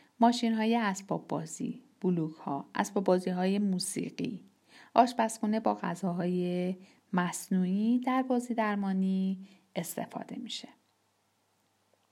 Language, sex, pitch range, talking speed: Persian, female, 190-250 Hz, 95 wpm